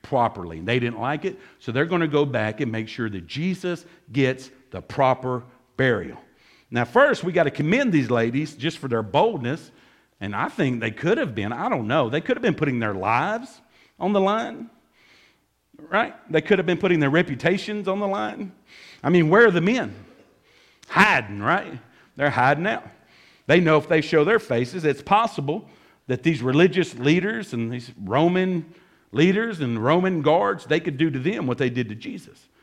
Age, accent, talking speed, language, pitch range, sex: 50-69, American, 190 wpm, English, 125-175 Hz, male